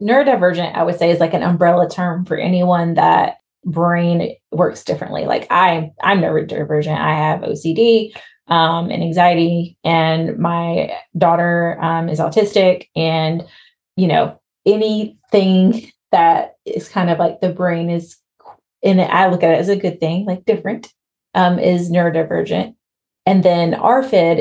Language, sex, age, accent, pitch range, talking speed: English, female, 20-39, American, 170-195 Hz, 145 wpm